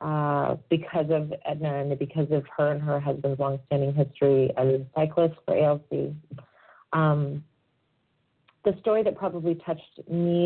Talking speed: 145 wpm